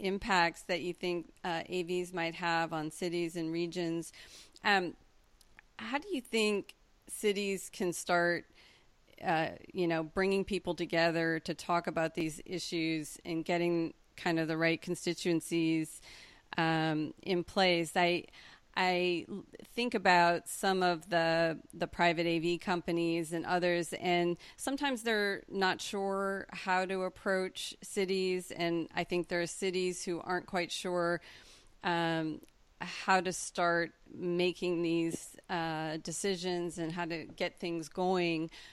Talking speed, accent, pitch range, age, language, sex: 135 wpm, American, 165-185 Hz, 40-59, English, female